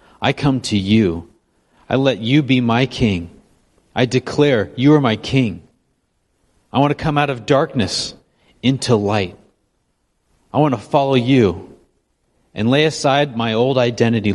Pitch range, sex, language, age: 95-125 Hz, male, English, 40-59